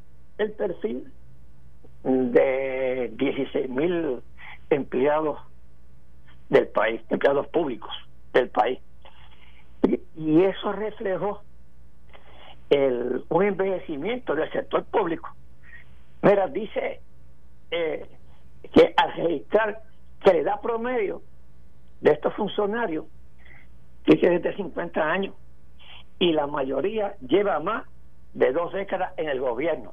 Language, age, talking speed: Spanish, 60-79, 100 wpm